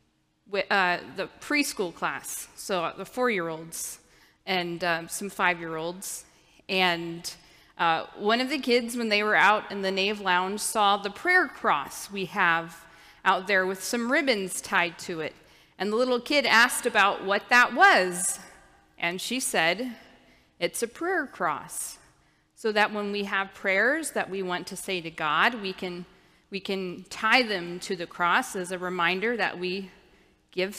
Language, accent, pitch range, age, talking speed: English, American, 180-230 Hz, 30-49, 160 wpm